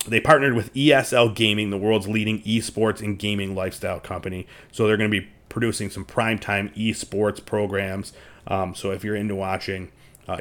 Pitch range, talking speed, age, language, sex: 95-110 Hz, 175 wpm, 30-49, English, male